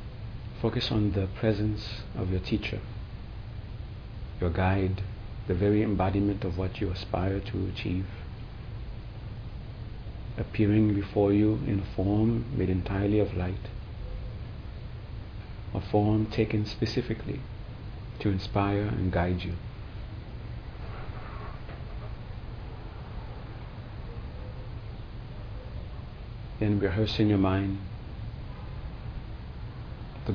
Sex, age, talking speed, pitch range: male, 50-69, 85 wpm, 100-110 Hz